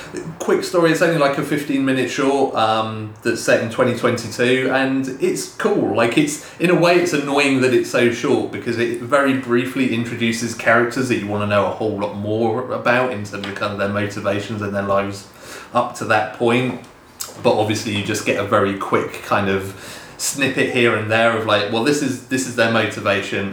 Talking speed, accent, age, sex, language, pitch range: 205 wpm, British, 30-49, male, English, 100-125 Hz